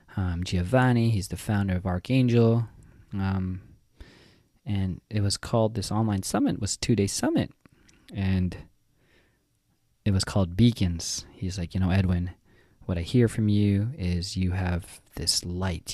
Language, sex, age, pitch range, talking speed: English, male, 20-39, 90-105 Hz, 145 wpm